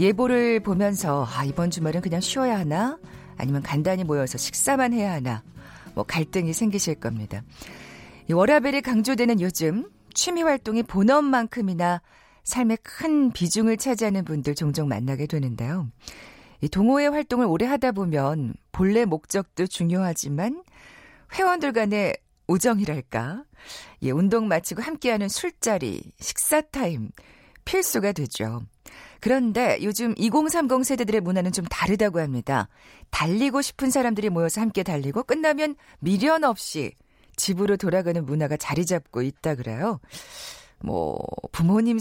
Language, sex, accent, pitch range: Korean, female, native, 160-245 Hz